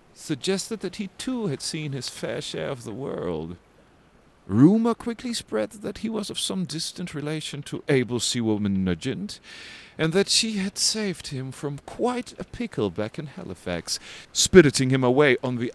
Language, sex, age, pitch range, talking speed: English, male, 40-59, 110-180 Hz, 170 wpm